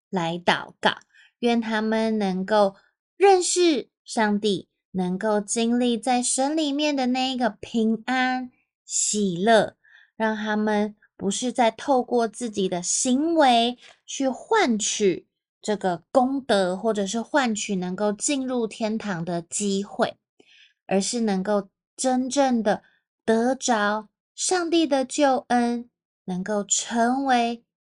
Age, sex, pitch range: 20-39, female, 200-260 Hz